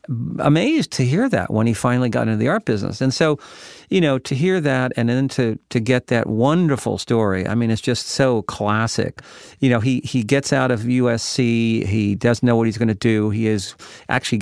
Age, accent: 50-69, American